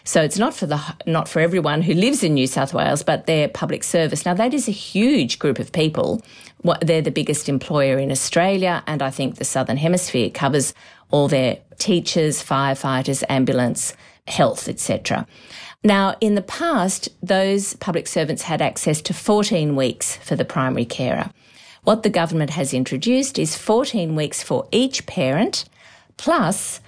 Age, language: 50-69, English